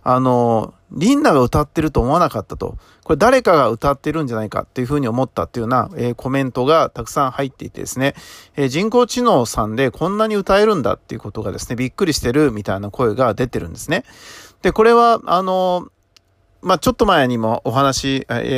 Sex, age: male, 40-59